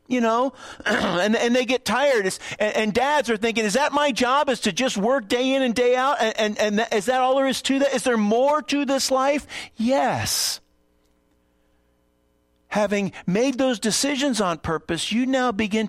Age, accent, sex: 50-69, American, male